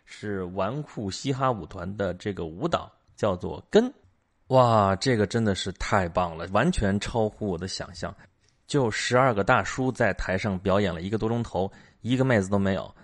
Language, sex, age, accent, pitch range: Chinese, male, 30-49, native, 95-115 Hz